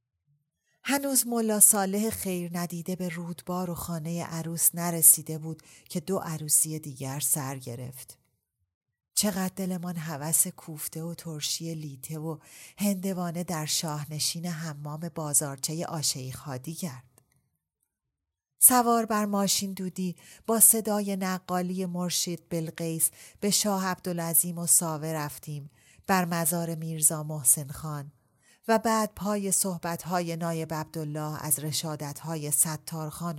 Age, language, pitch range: 30-49, Persian, 145-180 Hz